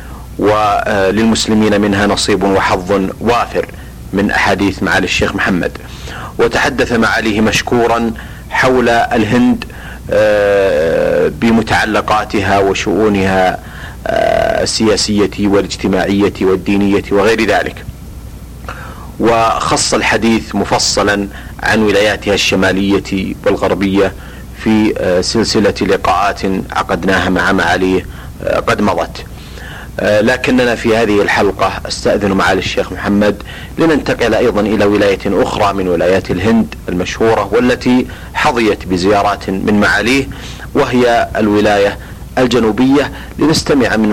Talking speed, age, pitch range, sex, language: 90 wpm, 40-59, 95-115 Hz, male, Arabic